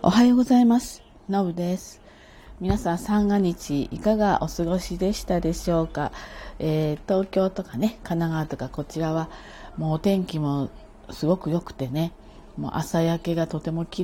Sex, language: female, Japanese